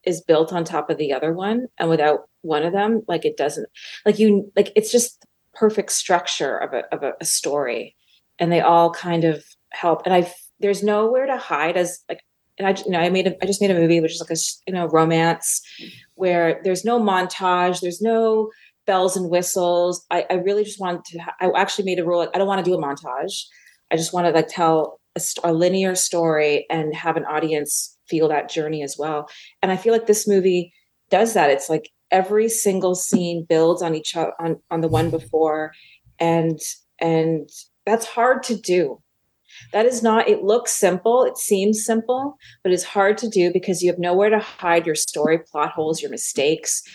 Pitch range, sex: 160-200 Hz, female